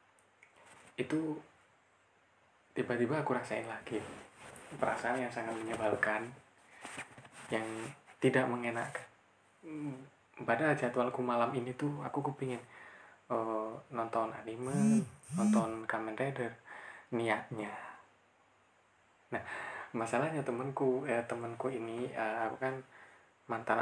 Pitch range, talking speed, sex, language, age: 115-140 Hz, 90 wpm, male, Indonesian, 20-39